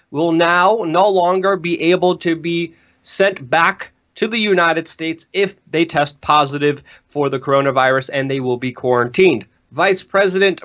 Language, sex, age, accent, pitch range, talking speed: English, male, 30-49, American, 140-185 Hz, 160 wpm